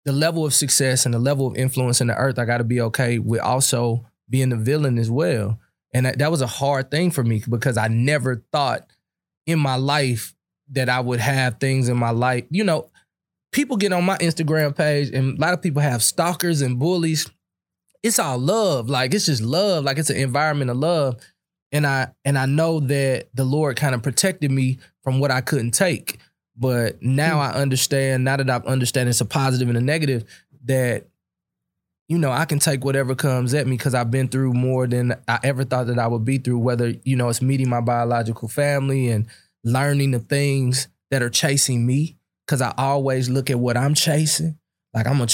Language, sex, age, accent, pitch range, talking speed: English, male, 20-39, American, 120-145 Hz, 215 wpm